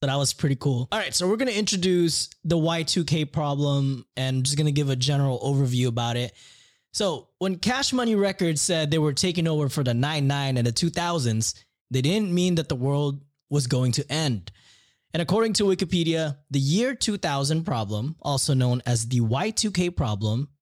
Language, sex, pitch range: English, male, 130-170 Hz